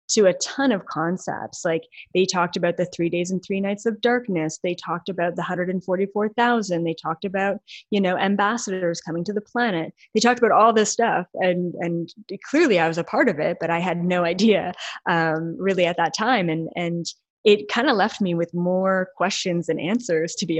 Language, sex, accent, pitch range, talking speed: English, female, American, 175-210 Hz, 215 wpm